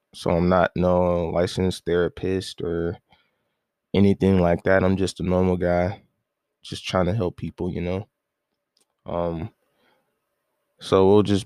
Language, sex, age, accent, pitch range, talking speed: English, male, 20-39, American, 85-100 Hz, 135 wpm